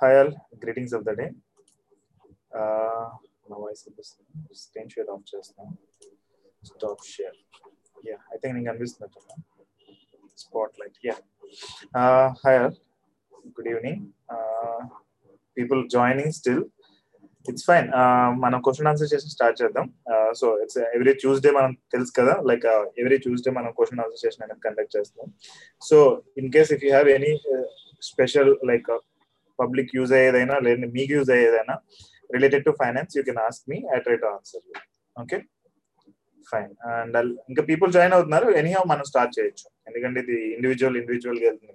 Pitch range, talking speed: 125-200 Hz, 100 wpm